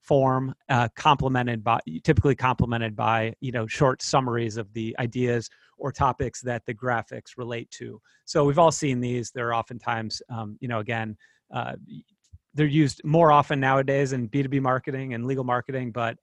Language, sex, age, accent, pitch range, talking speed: English, male, 30-49, American, 120-145 Hz, 165 wpm